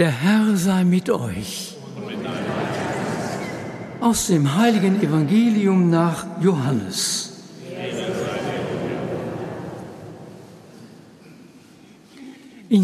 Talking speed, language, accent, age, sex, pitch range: 55 wpm, German, German, 60-79, male, 170-225 Hz